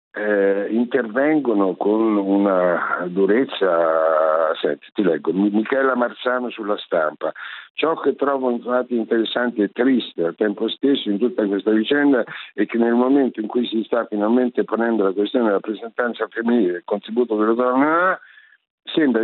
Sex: male